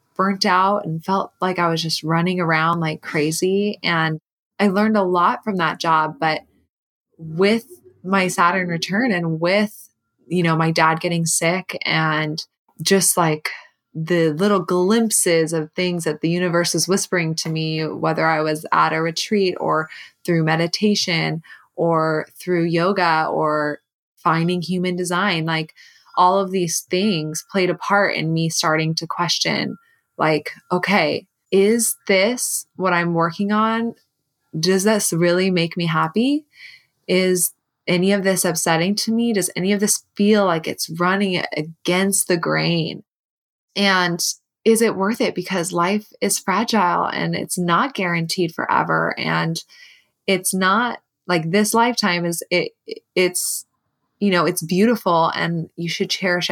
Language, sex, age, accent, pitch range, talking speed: English, female, 20-39, American, 160-195 Hz, 150 wpm